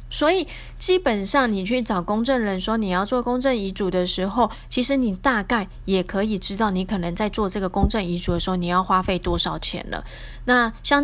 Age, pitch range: 20-39, 190-245 Hz